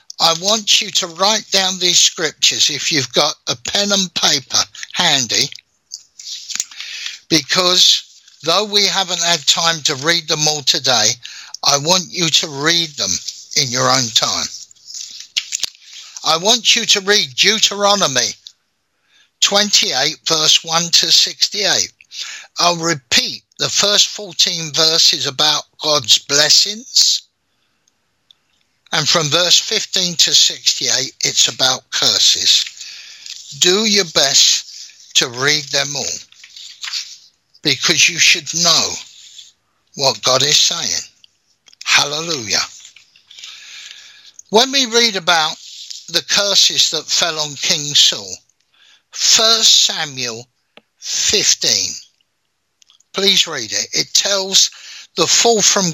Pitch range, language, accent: 155-205 Hz, English, British